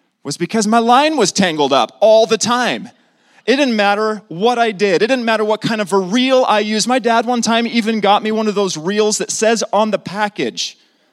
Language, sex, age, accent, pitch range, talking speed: English, male, 30-49, American, 155-220 Hz, 225 wpm